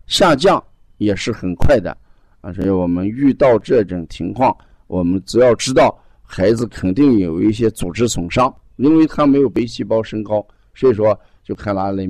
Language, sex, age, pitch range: Chinese, male, 50-69, 95-125 Hz